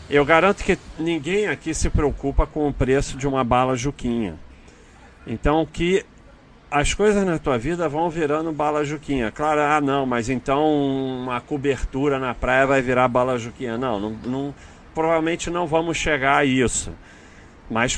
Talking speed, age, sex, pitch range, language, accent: 160 wpm, 40-59, male, 110-150 Hz, Portuguese, Brazilian